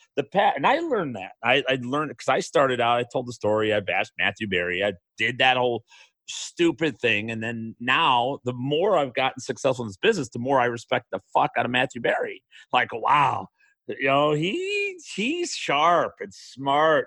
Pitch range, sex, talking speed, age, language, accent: 100-135 Hz, male, 205 wpm, 40-59, English, American